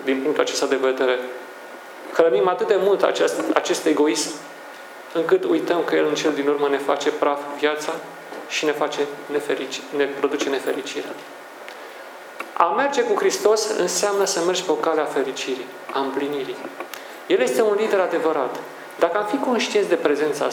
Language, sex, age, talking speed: Romanian, male, 40-59, 165 wpm